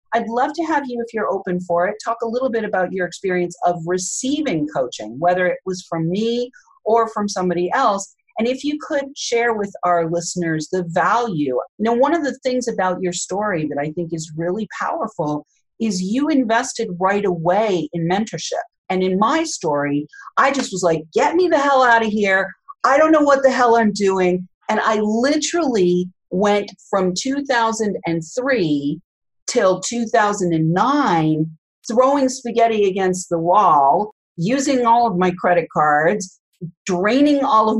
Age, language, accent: 40-59, English, American